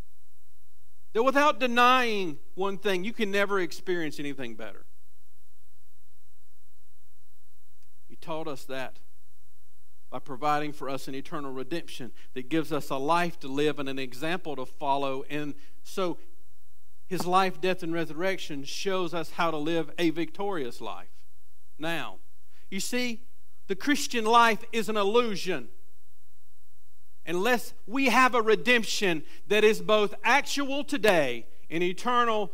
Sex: male